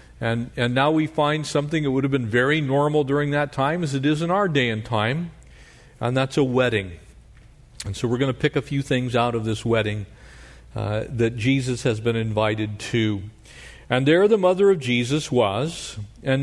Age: 50-69